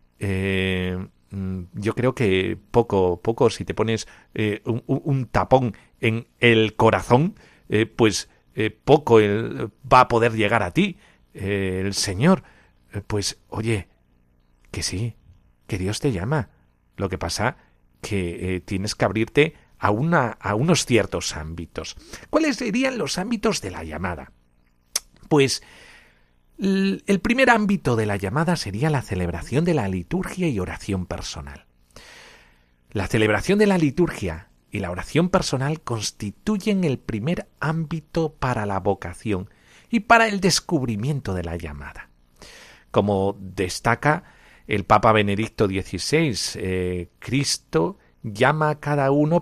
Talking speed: 130 wpm